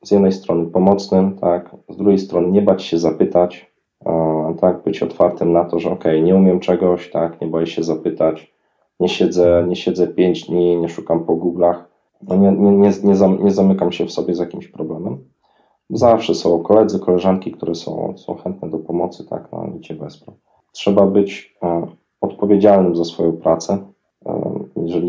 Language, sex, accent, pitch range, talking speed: Polish, male, native, 85-100 Hz, 170 wpm